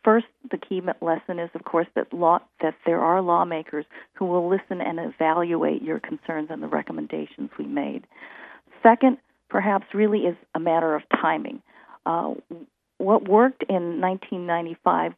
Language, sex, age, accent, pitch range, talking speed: English, female, 50-69, American, 170-215 Hz, 145 wpm